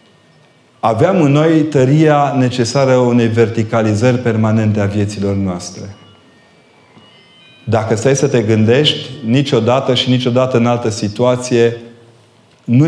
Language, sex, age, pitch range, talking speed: Romanian, male, 30-49, 105-130 Hz, 105 wpm